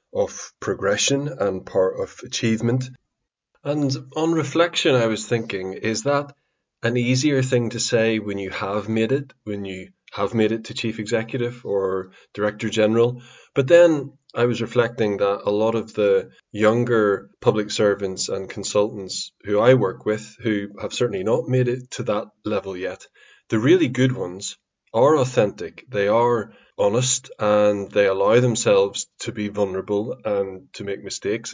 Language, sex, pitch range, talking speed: English, male, 105-130 Hz, 160 wpm